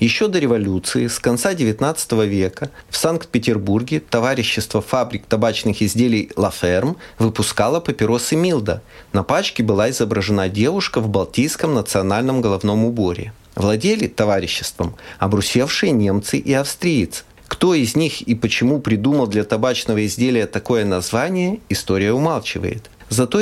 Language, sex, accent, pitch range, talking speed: Russian, male, native, 105-130 Hz, 120 wpm